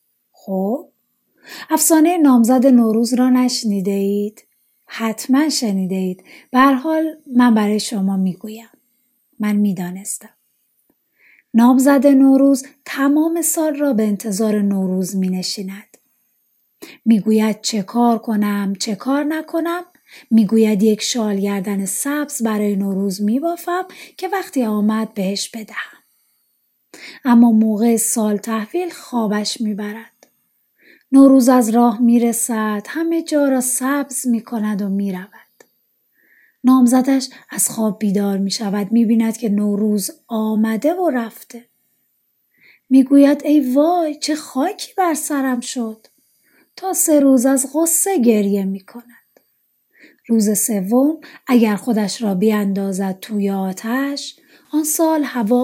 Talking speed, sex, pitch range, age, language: 110 wpm, female, 210-285 Hz, 30-49, Persian